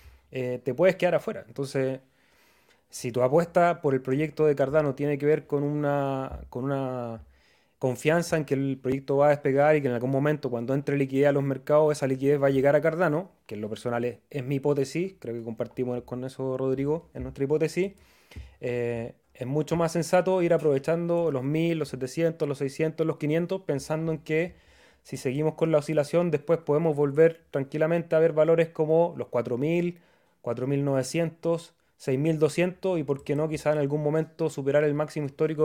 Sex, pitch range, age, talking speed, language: male, 135-165 Hz, 30-49, 190 wpm, Spanish